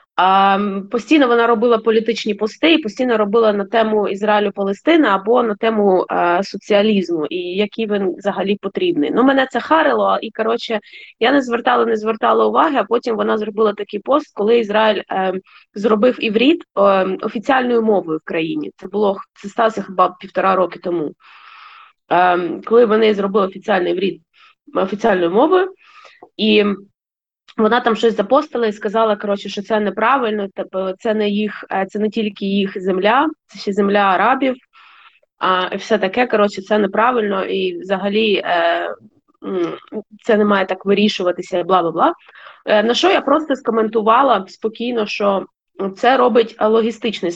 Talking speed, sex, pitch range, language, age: 140 wpm, female, 195-235 Hz, Ukrainian, 20-39